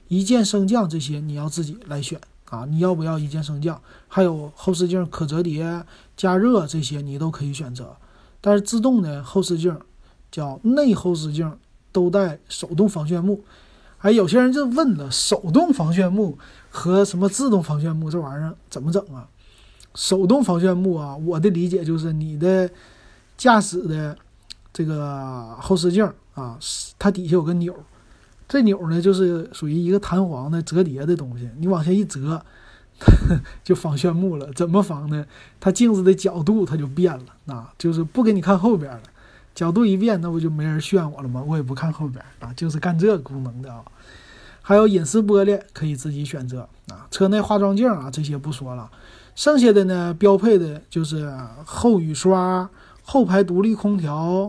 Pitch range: 145-195 Hz